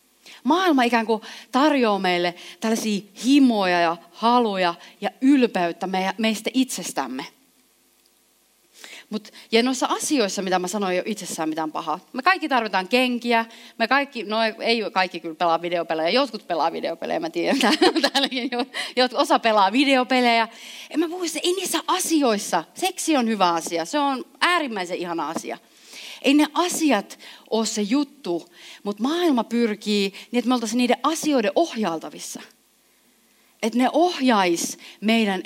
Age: 30-49